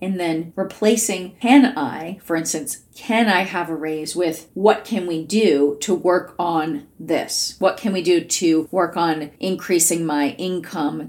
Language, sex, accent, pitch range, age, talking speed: English, female, American, 165-215 Hz, 30-49, 170 wpm